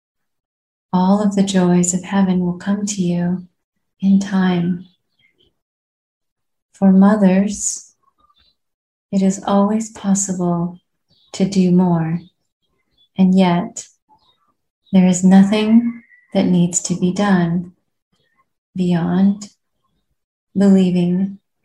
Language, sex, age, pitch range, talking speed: English, female, 30-49, 180-200 Hz, 90 wpm